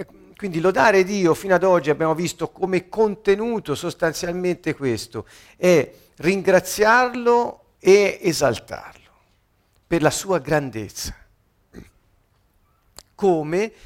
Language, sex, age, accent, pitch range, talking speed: Italian, male, 50-69, native, 115-165 Hz, 90 wpm